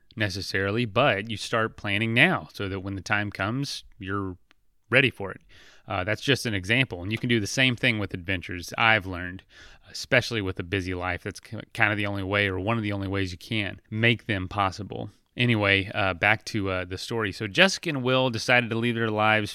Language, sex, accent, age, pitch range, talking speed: English, male, American, 30-49, 100-130 Hz, 215 wpm